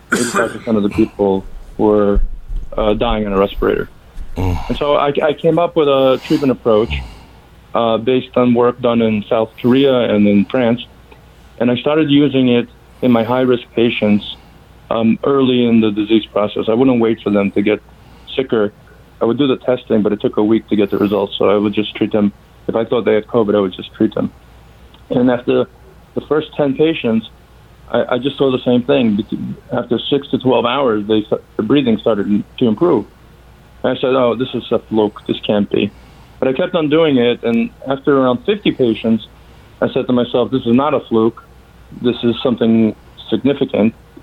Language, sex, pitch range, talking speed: English, male, 105-125 Hz, 195 wpm